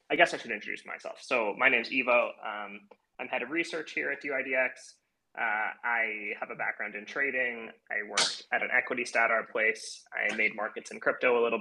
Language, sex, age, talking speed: English, male, 20-39, 205 wpm